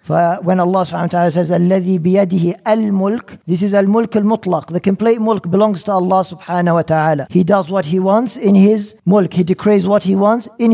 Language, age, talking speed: English, 50-69, 185 wpm